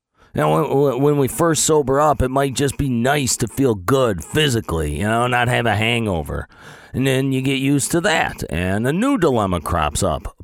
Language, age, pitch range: English, 40-59, 110-145 Hz